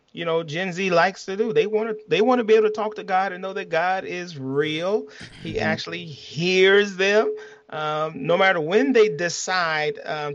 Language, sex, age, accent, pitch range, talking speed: English, male, 30-49, American, 145-190 Hz, 210 wpm